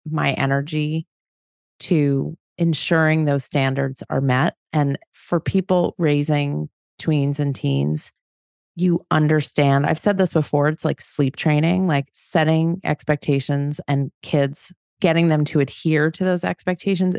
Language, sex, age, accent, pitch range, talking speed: English, female, 30-49, American, 140-175 Hz, 130 wpm